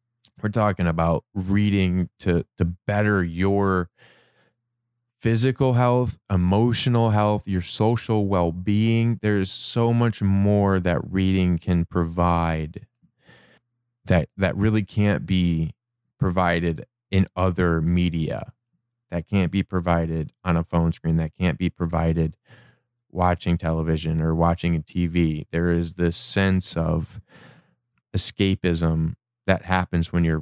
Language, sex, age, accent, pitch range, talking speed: English, male, 20-39, American, 85-115 Hz, 120 wpm